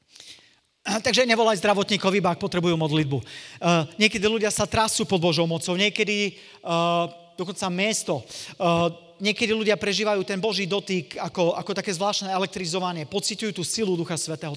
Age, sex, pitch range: 40-59, male, 165-205 Hz